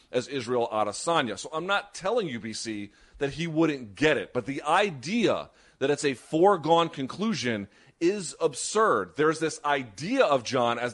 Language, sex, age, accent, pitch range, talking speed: English, male, 30-49, American, 120-170 Hz, 165 wpm